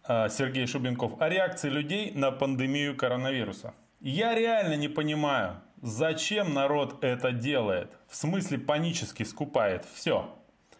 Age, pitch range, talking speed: 20-39, 125-180 Hz, 115 wpm